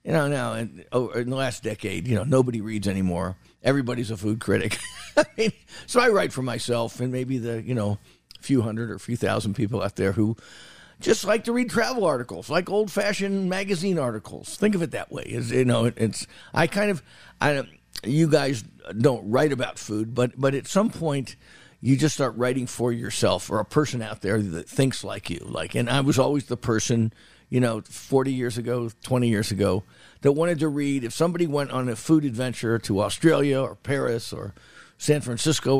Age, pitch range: 50-69, 110-145 Hz